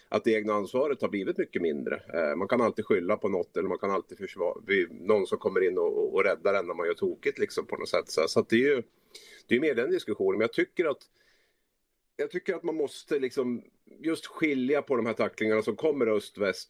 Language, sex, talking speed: Swedish, male, 230 wpm